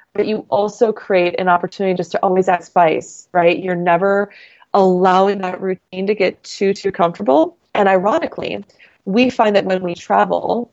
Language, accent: English, American